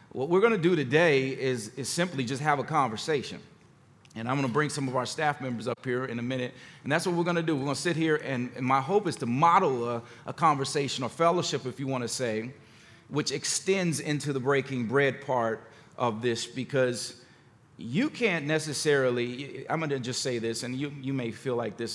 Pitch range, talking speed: 120-150 Hz, 230 wpm